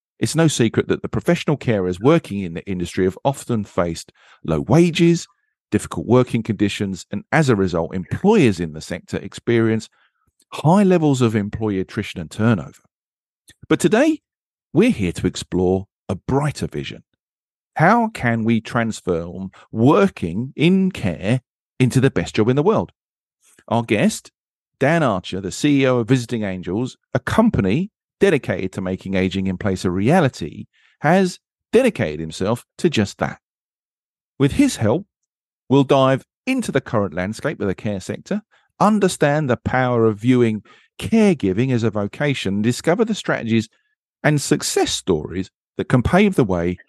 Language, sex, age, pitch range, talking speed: English, male, 40-59, 100-170 Hz, 150 wpm